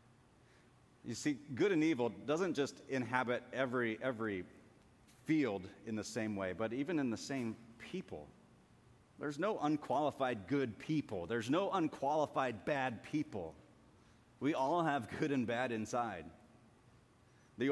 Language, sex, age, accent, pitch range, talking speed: English, male, 40-59, American, 110-140 Hz, 130 wpm